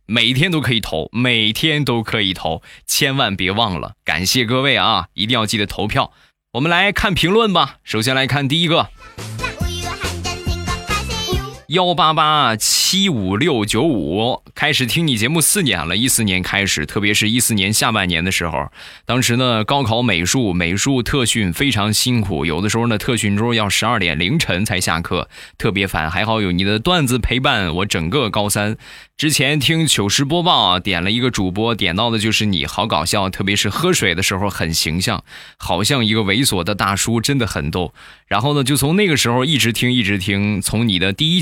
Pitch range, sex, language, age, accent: 95-125 Hz, male, Chinese, 20-39, native